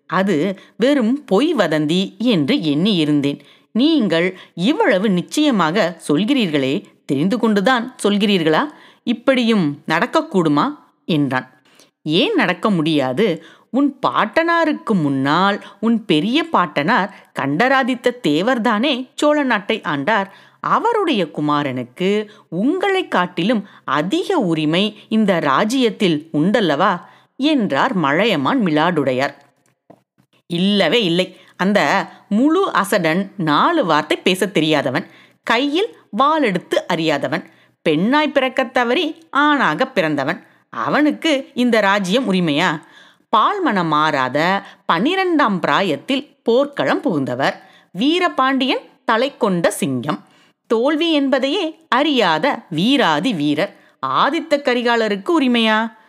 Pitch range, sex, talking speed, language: 170-275 Hz, female, 85 wpm, Tamil